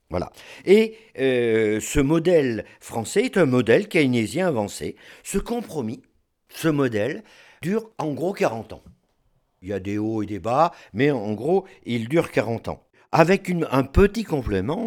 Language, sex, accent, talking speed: French, male, French, 160 wpm